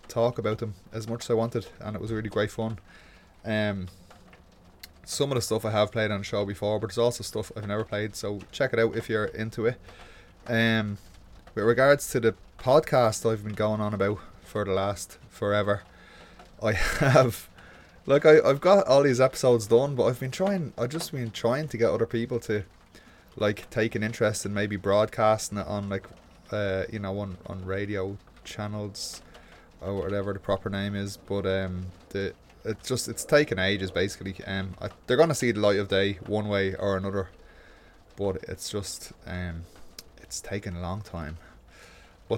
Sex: male